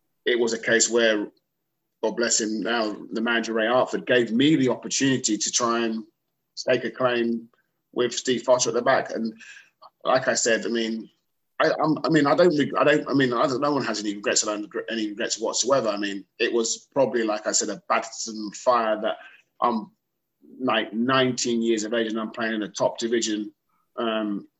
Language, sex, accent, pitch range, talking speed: English, male, British, 110-120 Hz, 205 wpm